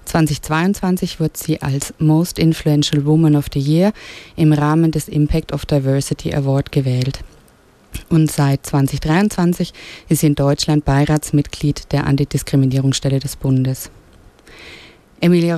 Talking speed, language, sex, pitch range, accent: 120 wpm, English, female, 145-175 Hz, German